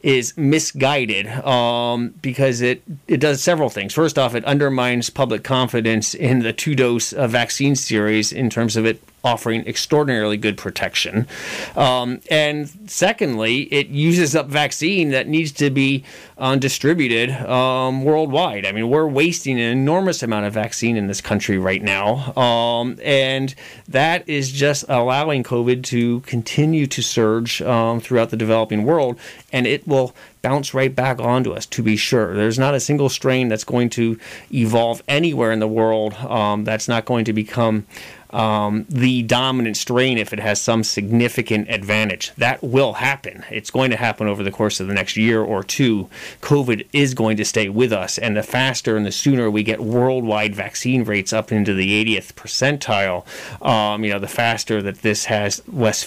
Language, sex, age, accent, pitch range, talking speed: English, male, 30-49, American, 110-135 Hz, 175 wpm